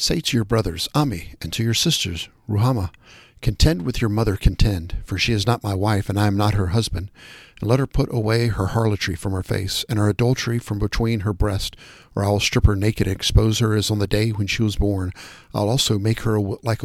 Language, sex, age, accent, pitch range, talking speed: English, male, 50-69, American, 100-120 Hz, 240 wpm